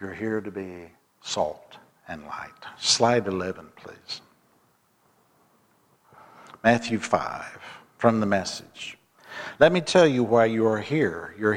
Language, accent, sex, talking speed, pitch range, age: English, American, male, 125 wpm, 105-130 Hz, 60-79